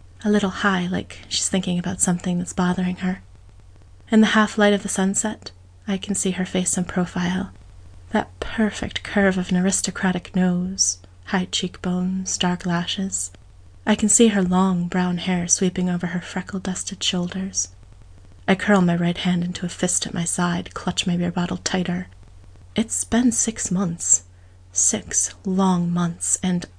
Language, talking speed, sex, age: English, 160 wpm, female, 30-49